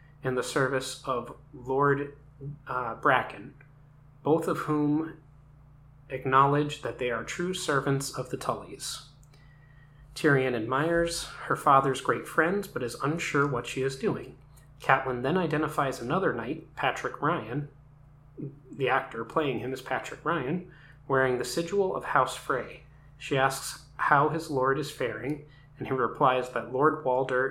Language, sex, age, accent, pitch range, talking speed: English, male, 30-49, American, 135-150 Hz, 140 wpm